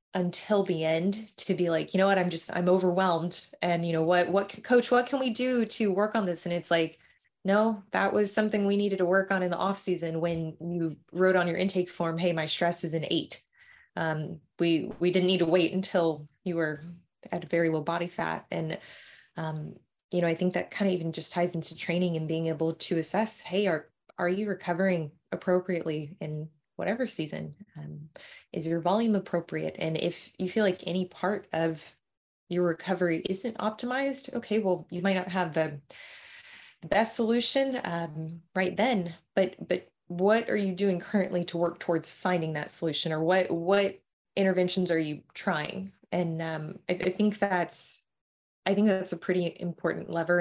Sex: female